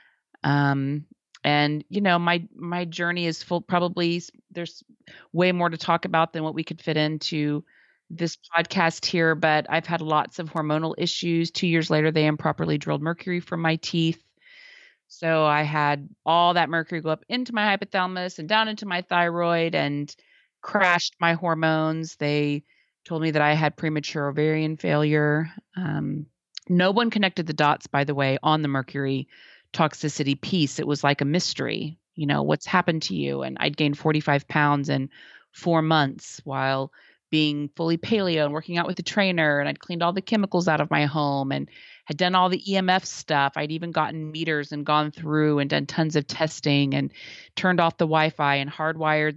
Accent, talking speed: American, 180 wpm